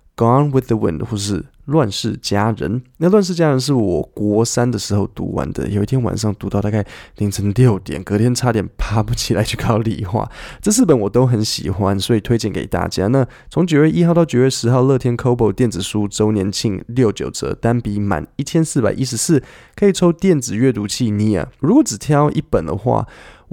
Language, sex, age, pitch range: Chinese, male, 20-39, 105-140 Hz